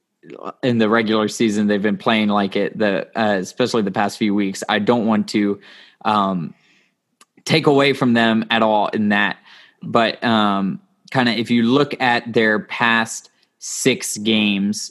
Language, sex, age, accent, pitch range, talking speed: English, male, 20-39, American, 105-125 Hz, 165 wpm